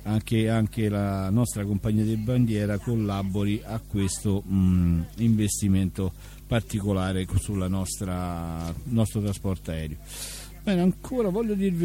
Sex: male